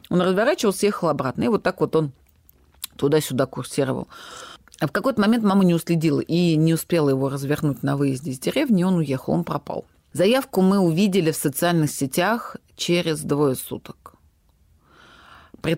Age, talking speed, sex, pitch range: 30-49, 160 wpm, female, 135-175 Hz